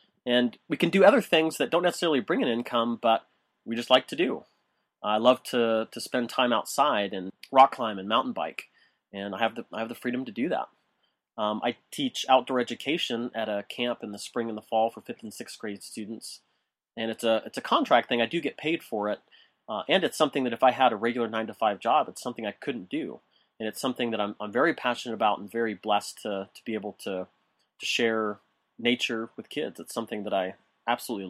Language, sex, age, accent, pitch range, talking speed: English, male, 30-49, American, 110-130 Hz, 235 wpm